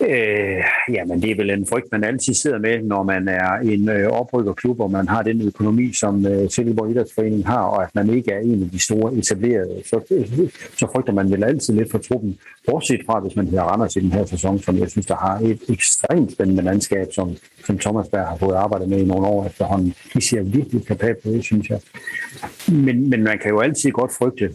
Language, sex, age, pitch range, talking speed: Danish, male, 60-79, 100-115 Hz, 235 wpm